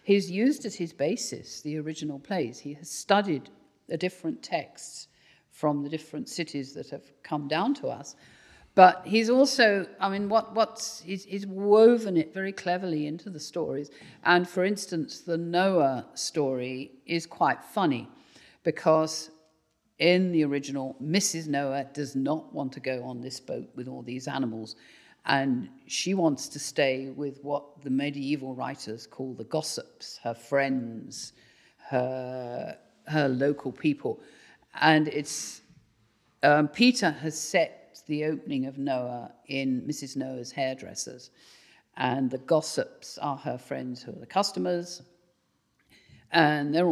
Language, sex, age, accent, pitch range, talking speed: English, female, 50-69, British, 135-175 Hz, 145 wpm